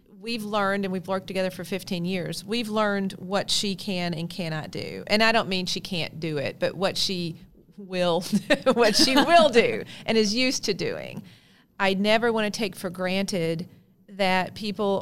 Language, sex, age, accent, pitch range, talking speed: English, female, 40-59, American, 180-210 Hz, 190 wpm